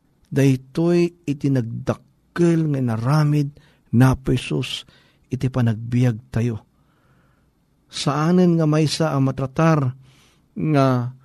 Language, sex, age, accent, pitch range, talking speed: Filipino, male, 50-69, native, 125-150 Hz, 85 wpm